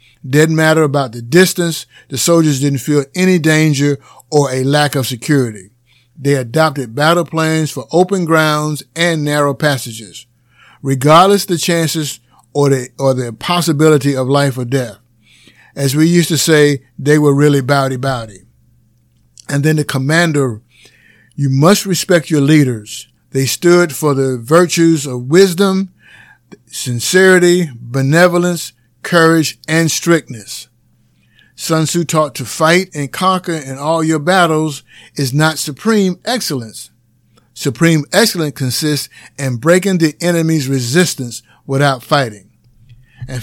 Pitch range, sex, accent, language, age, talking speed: 130-160 Hz, male, American, English, 50-69, 130 wpm